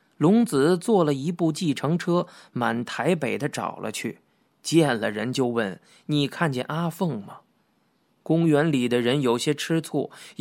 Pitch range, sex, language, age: 120-155 Hz, male, Chinese, 20-39